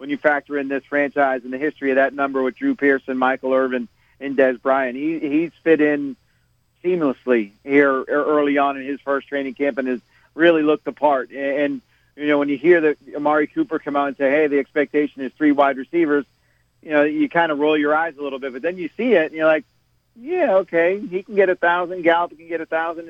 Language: English